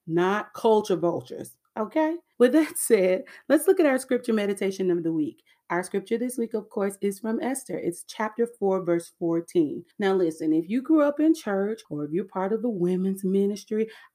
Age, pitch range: 30-49, 185-295 Hz